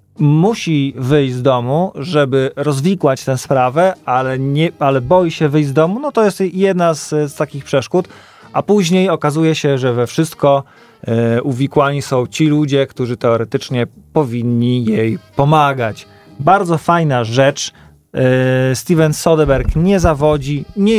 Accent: native